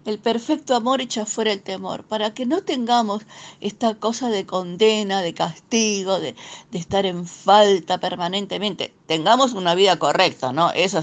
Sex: female